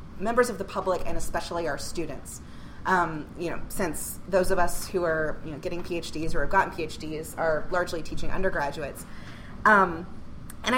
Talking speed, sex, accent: 175 wpm, female, American